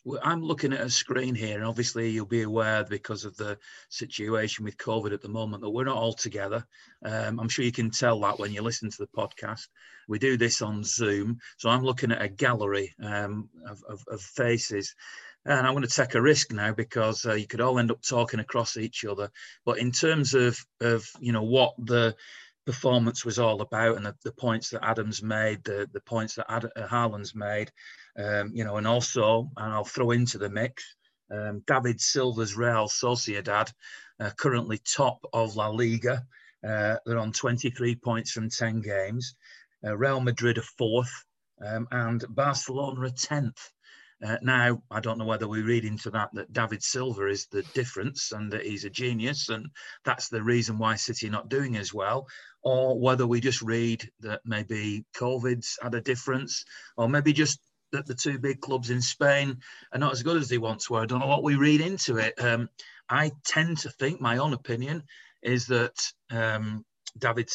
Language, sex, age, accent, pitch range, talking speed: English, male, 40-59, British, 110-130 Hz, 195 wpm